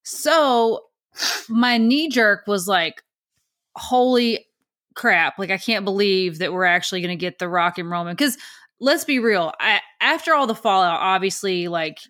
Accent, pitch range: American, 185-245 Hz